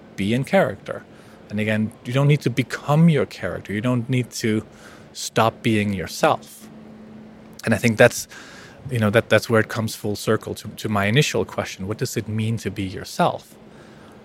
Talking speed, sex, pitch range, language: 185 wpm, male, 100-125 Hz, English